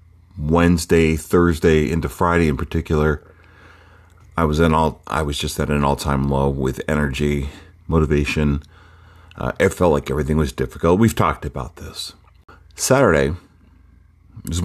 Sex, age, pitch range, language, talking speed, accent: male, 40-59, 75-90 Hz, English, 130 wpm, American